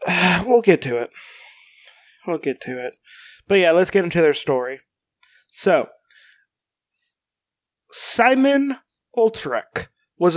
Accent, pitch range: American, 150-190 Hz